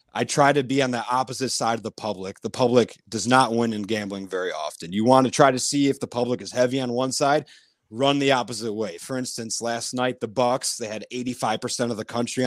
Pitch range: 115-135 Hz